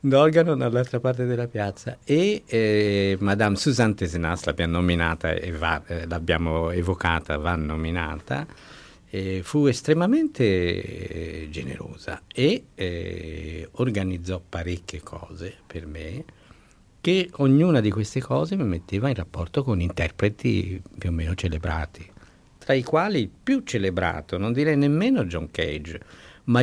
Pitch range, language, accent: 85-125 Hz, Italian, native